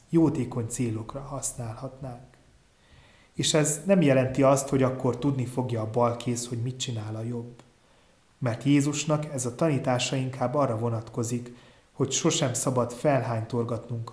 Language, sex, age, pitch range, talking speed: Hungarian, male, 30-49, 120-145 Hz, 130 wpm